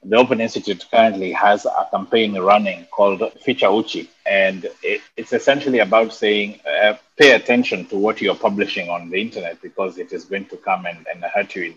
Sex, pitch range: male, 100-120 Hz